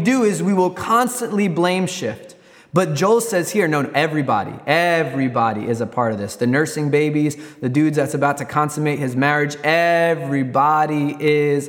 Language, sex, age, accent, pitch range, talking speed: English, male, 20-39, American, 145-190 Hz, 170 wpm